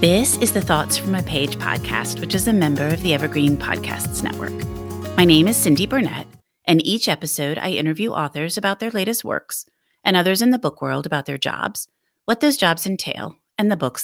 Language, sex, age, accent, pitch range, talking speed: English, female, 30-49, American, 145-200 Hz, 205 wpm